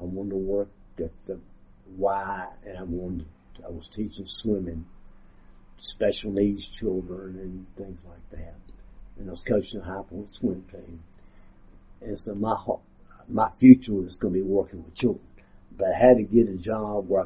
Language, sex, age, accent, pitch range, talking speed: English, male, 60-79, American, 95-115 Hz, 175 wpm